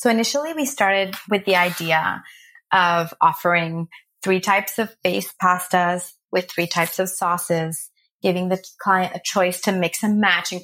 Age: 30-49